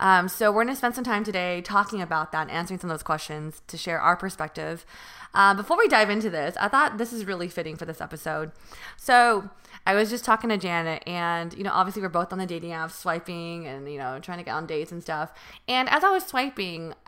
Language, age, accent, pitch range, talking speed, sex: English, 20-39, American, 170-225 Hz, 240 wpm, female